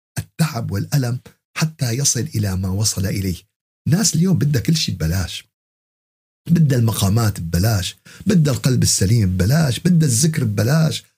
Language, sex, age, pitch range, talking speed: Arabic, male, 50-69, 100-150 Hz, 130 wpm